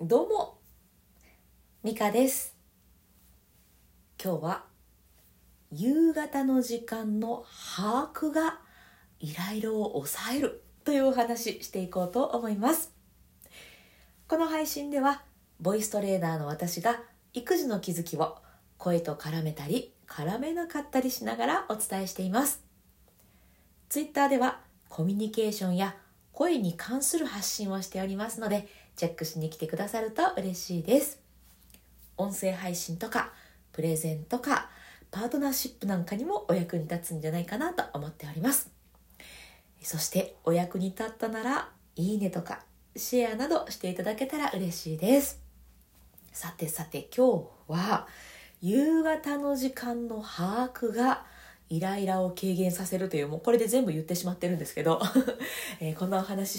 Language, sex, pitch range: Japanese, female, 170-255 Hz